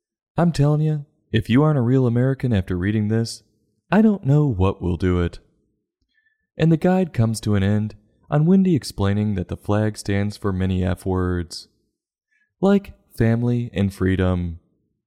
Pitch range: 95-140 Hz